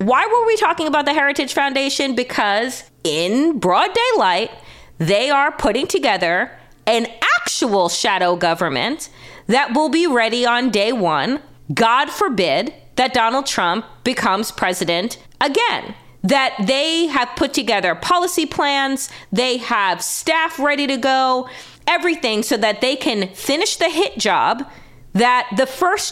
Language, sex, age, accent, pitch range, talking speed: English, female, 30-49, American, 225-310 Hz, 140 wpm